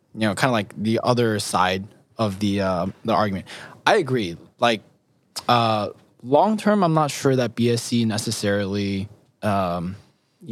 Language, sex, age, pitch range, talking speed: English, male, 20-39, 110-140 Hz, 150 wpm